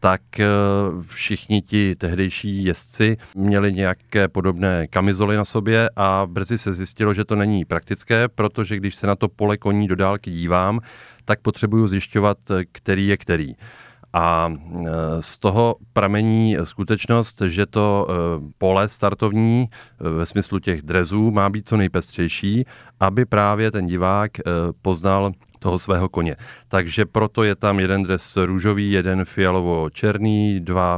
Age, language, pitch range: 40-59, Czech, 90-105 Hz